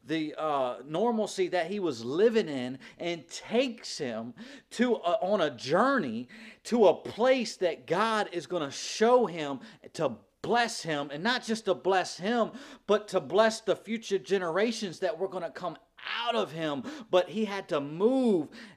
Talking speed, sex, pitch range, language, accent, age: 175 wpm, male, 180-225 Hz, English, American, 40-59